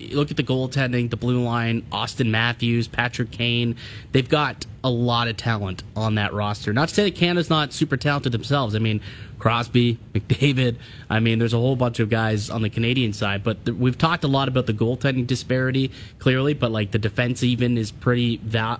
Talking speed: 205 wpm